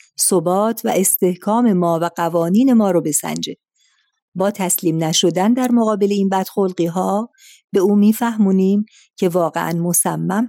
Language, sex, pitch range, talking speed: Persian, female, 175-230 Hz, 130 wpm